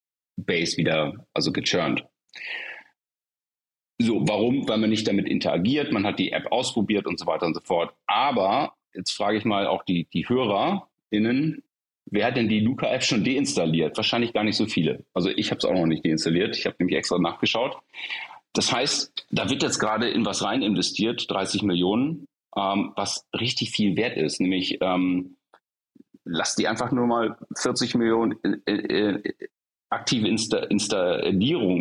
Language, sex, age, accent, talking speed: German, male, 40-59, German, 170 wpm